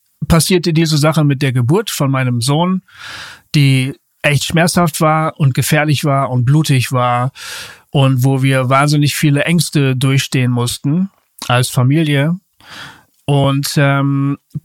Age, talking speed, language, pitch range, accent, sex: 40-59, 125 wpm, German, 135-165 Hz, German, male